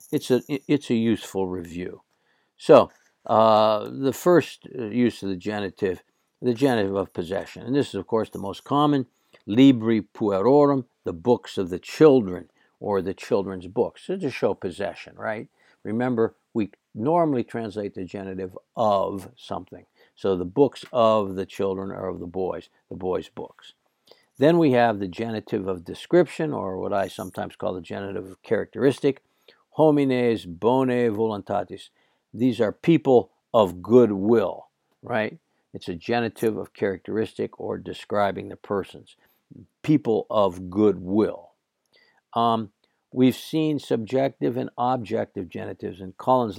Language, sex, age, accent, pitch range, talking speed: English, male, 60-79, American, 100-130 Hz, 145 wpm